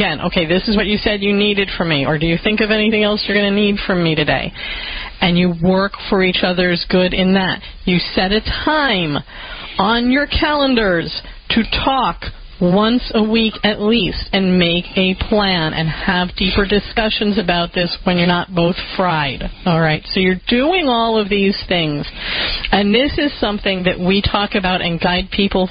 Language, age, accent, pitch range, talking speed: English, 40-59, American, 180-220 Hz, 190 wpm